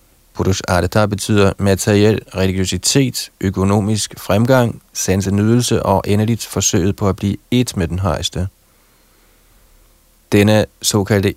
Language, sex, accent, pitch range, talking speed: Danish, male, native, 95-110 Hz, 100 wpm